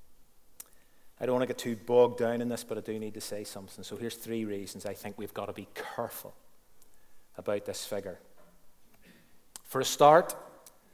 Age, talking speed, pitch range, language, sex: 30-49, 185 wpm, 120-155 Hz, English, male